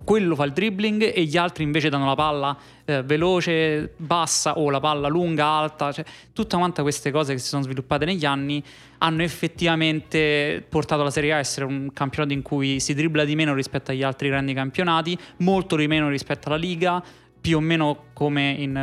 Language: Italian